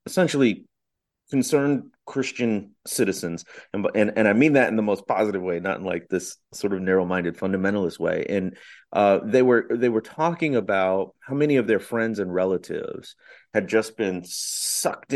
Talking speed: 175 wpm